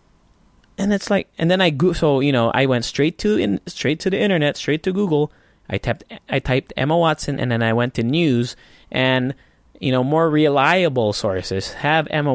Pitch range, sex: 115-160 Hz, male